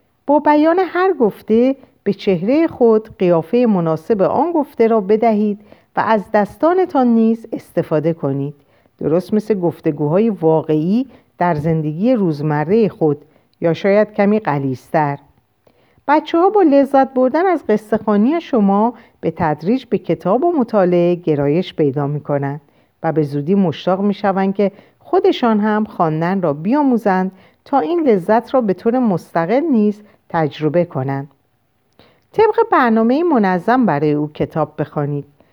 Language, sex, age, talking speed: Persian, female, 50-69, 130 wpm